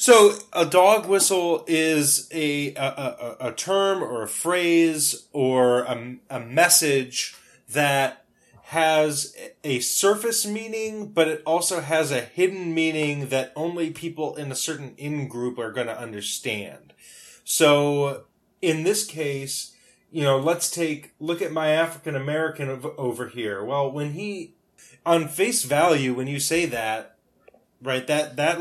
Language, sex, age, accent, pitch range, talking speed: English, male, 30-49, American, 135-170 Hz, 145 wpm